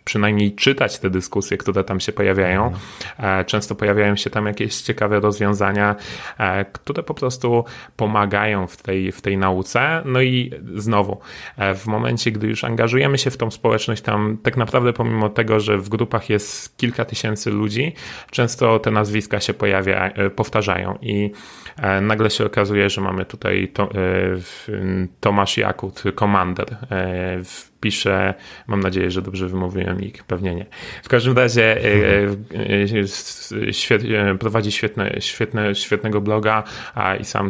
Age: 30-49